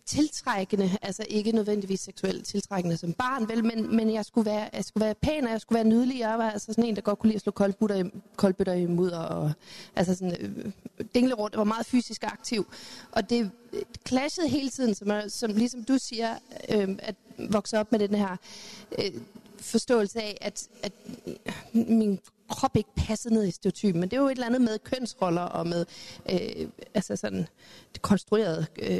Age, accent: 30-49, native